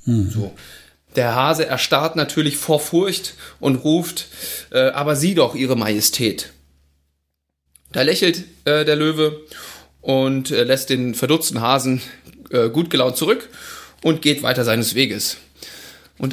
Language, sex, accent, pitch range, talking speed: German, male, German, 115-155 Hz, 130 wpm